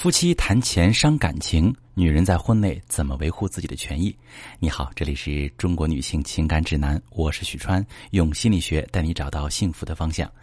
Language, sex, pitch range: Chinese, male, 85-120 Hz